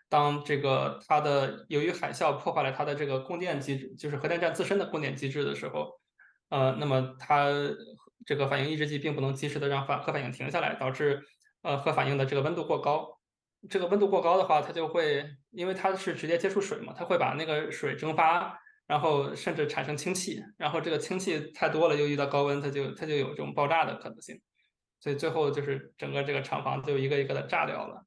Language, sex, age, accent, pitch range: English, male, 20-39, Chinese, 140-165 Hz